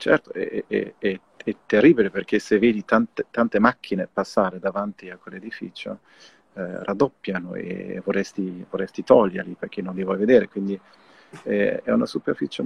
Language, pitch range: Italian, 95-120 Hz